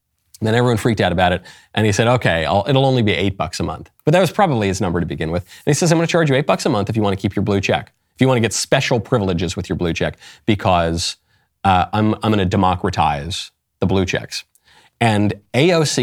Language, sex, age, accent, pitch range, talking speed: English, male, 30-49, American, 95-140 Hz, 265 wpm